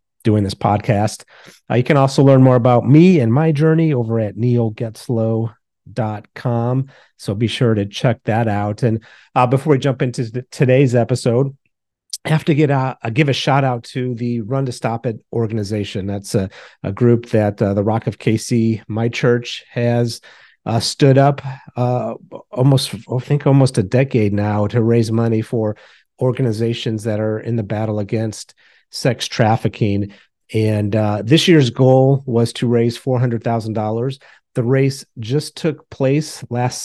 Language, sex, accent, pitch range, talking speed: English, male, American, 110-130 Hz, 170 wpm